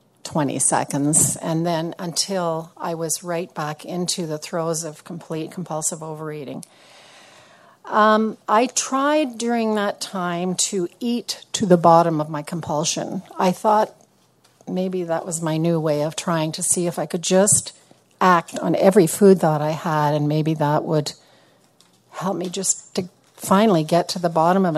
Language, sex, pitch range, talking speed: English, female, 155-190 Hz, 160 wpm